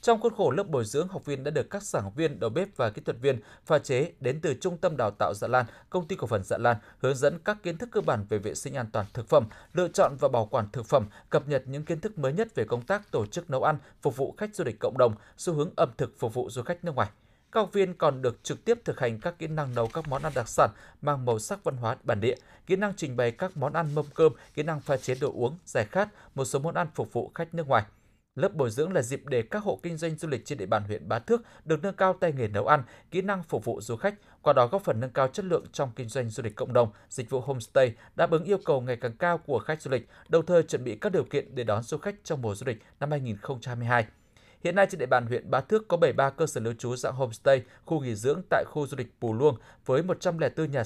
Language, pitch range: Vietnamese, 120-170 Hz